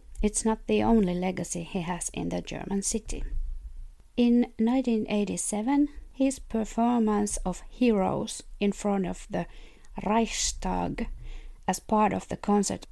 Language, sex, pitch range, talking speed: English, female, 180-230 Hz, 125 wpm